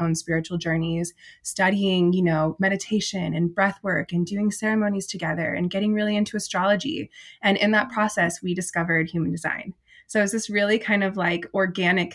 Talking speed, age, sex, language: 175 wpm, 20-39, female, English